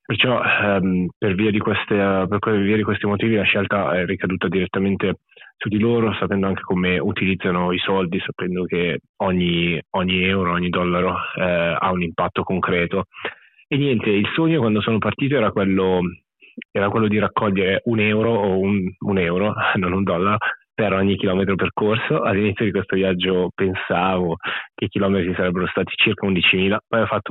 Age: 20-39